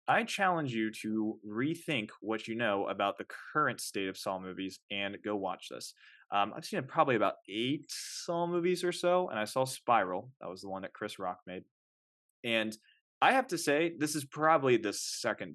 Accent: American